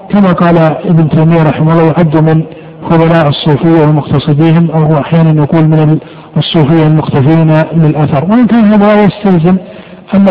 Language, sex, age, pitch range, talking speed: Arabic, male, 50-69, 160-185 Hz, 130 wpm